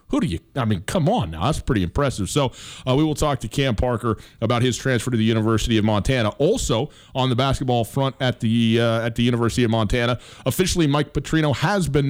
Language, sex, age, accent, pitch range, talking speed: English, male, 30-49, American, 110-140 Hz, 225 wpm